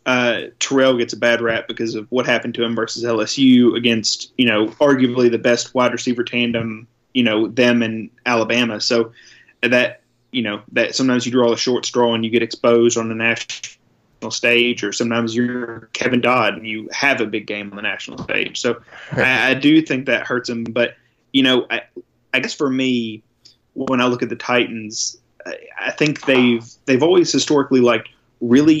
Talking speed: 195 wpm